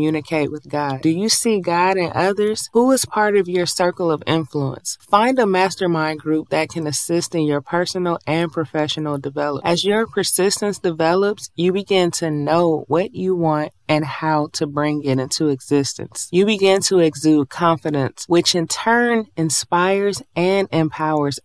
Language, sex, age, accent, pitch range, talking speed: English, female, 20-39, American, 155-195 Hz, 165 wpm